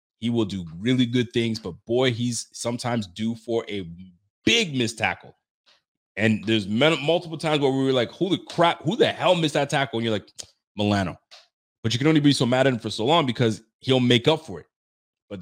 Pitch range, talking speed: 110-135 Hz, 220 wpm